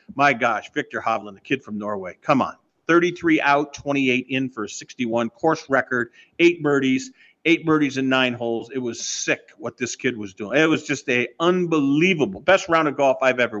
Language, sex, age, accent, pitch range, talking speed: English, male, 50-69, American, 120-150 Hz, 200 wpm